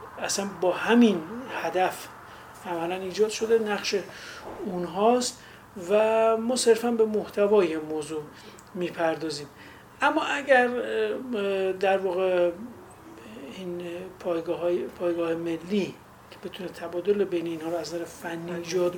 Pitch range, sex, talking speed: 170-220 Hz, male, 105 wpm